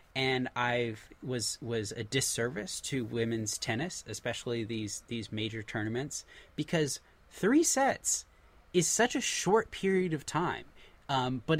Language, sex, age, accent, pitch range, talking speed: English, male, 20-39, American, 115-150 Hz, 135 wpm